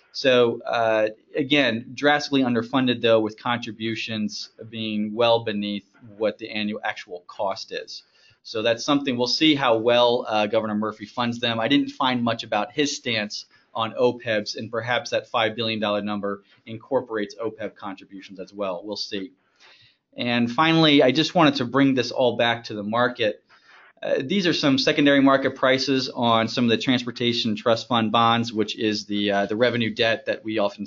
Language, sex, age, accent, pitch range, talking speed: English, male, 30-49, American, 110-130 Hz, 175 wpm